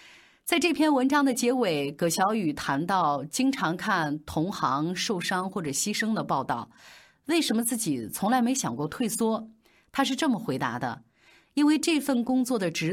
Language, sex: Chinese, female